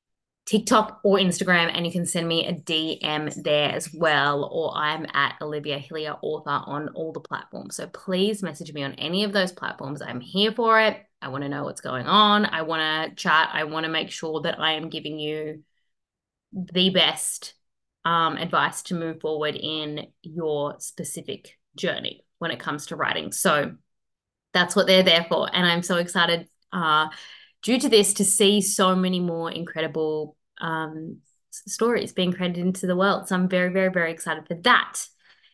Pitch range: 160-200 Hz